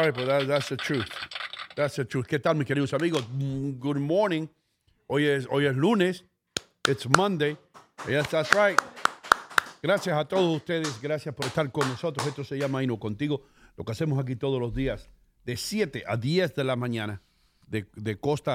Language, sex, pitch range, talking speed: English, male, 105-140 Hz, 180 wpm